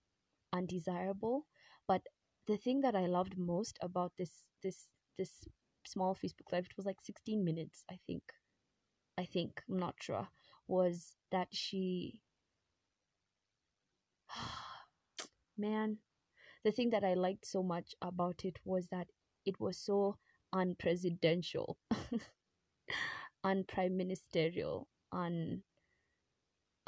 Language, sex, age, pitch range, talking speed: English, female, 20-39, 175-195 Hz, 110 wpm